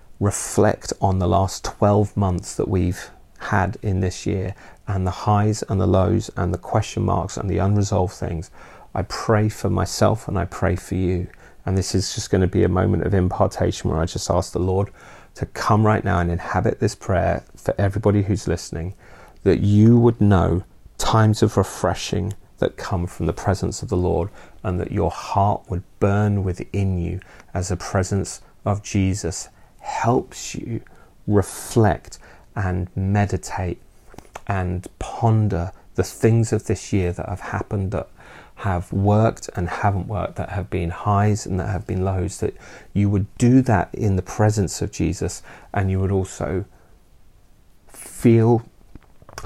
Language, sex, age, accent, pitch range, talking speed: English, male, 30-49, British, 90-105 Hz, 165 wpm